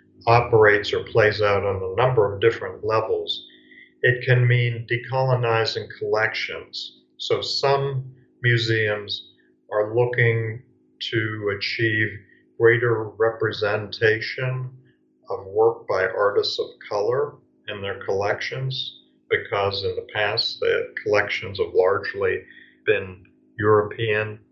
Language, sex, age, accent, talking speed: English, male, 50-69, American, 105 wpm